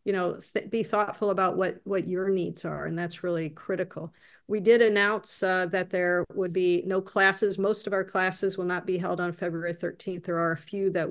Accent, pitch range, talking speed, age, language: American, 175-200 Hz, 215 wpm, 50-69, English